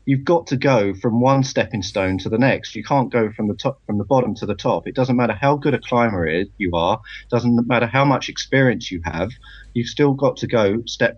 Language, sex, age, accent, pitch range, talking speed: English, male, 30-49, British, 100-125 Hz, 245 wpm